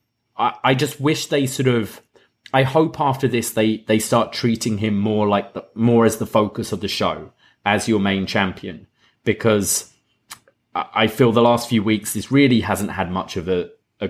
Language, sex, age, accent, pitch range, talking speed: English, male, 30-49, British, 100-125 Hz, 185 wpm